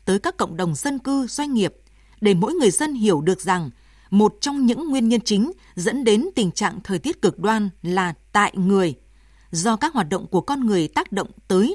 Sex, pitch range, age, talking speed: female, 195-280 Hz, 20-39, 215 wpm